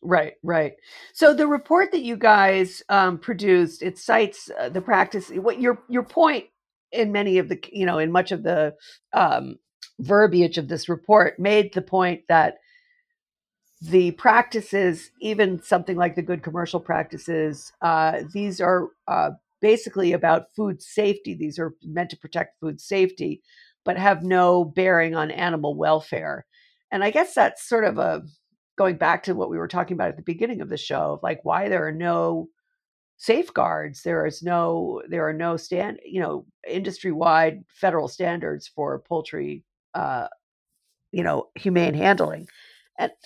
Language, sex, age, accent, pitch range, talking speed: English, female, 50-69, American, 170-220 Hz, 160 wpm